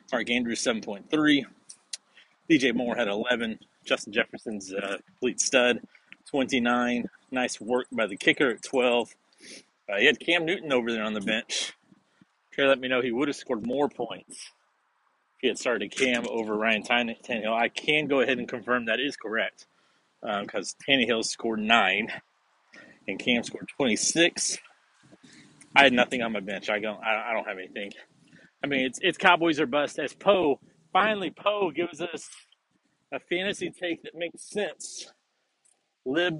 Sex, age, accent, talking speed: male, 30-49, American, 165 wpm